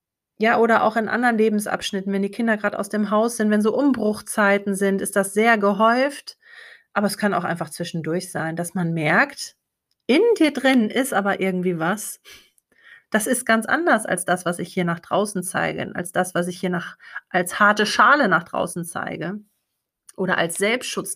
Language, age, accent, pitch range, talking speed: German, 30-49, German, 190-250 Hz, 185 wpm